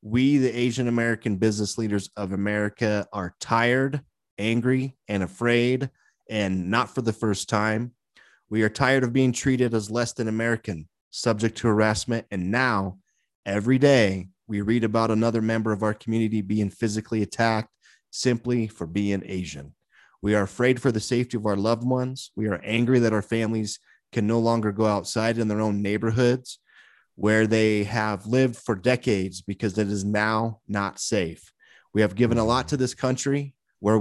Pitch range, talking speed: 105-120 Hz, 170 wpm